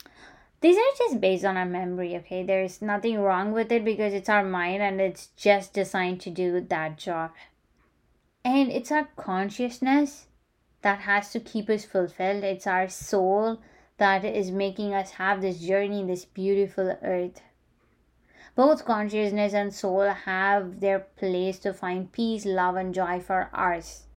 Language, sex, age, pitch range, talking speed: English, female, 20-39, 185-215 Hz, 155 wpm